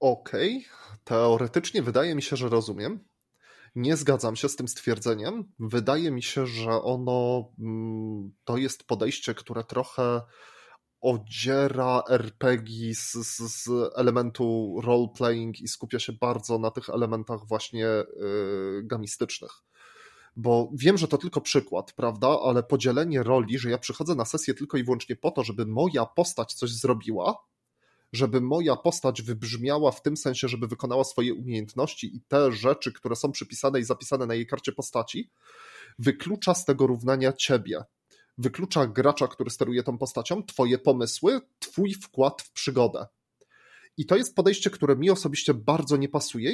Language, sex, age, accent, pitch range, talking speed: Polish, male, 20-39, native, 120-145 Hz, 150 wpm